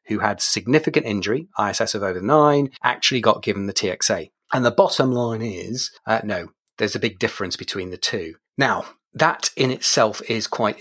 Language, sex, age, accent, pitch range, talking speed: English, male, 30-49, British, 110-135 Hz, 185 wpm